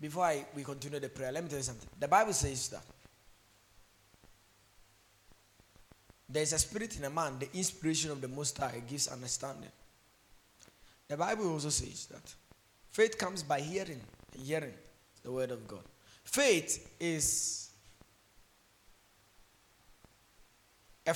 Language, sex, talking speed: English, male, 135 wpm